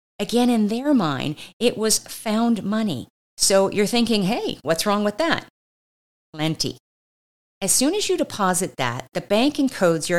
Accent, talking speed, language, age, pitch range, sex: American, 160 wpm, English, 50-69, 160-235 Hz, female